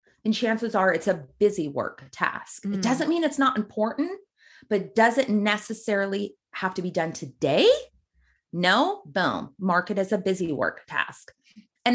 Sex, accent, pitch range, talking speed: female, American, 190-250 Hz, 165 wpm